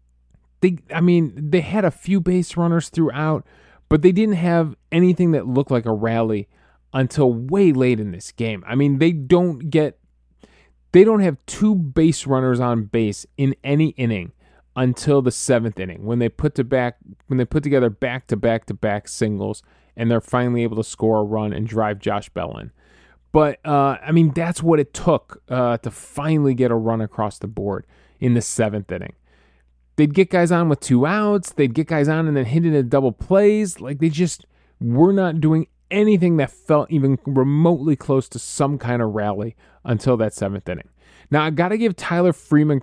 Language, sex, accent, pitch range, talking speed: English, male, American, 110-160 Hz, 200 wpm